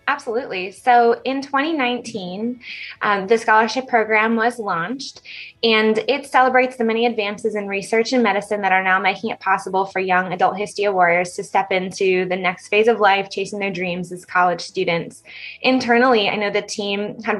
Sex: female